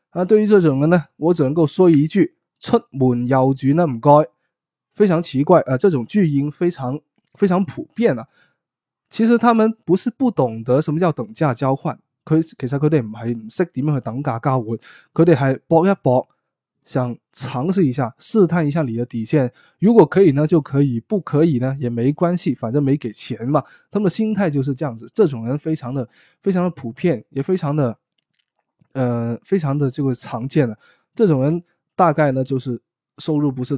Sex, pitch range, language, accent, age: male, 125-165 Hz, Chinese, native, 20-39